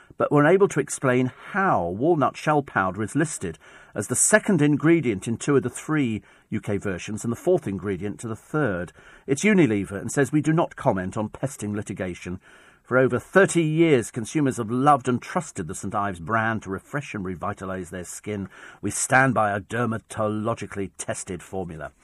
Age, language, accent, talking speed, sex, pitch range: 50-69, English, British, 180 wpm, male, 110-165 Hz